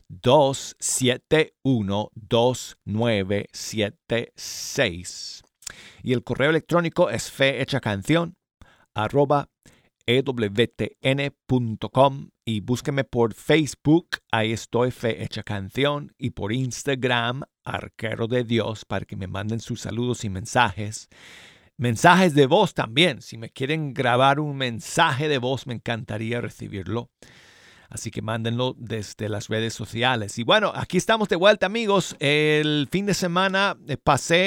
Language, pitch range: Spanish, 110-140 Hz